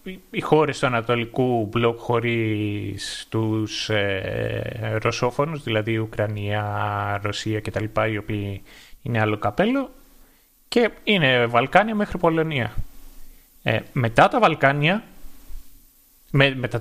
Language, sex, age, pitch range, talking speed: Greek, male, 30-49, 110-160 Hz, 80 wpm